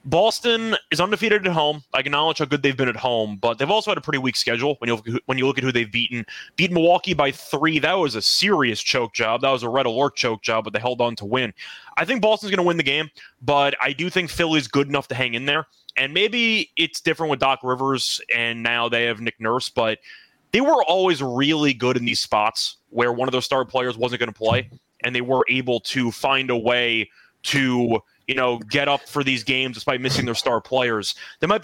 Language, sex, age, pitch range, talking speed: English, male, 20-39, 125-165 Hz, 240 wpm